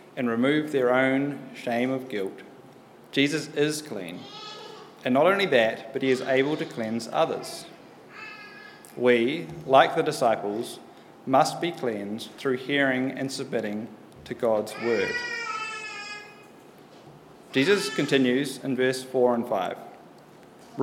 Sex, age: male, 30-49